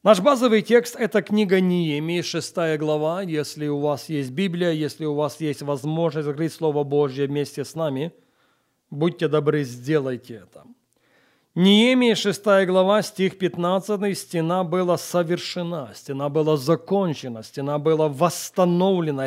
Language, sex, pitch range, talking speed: Russian, male, 140-175 Hz, 135 wpm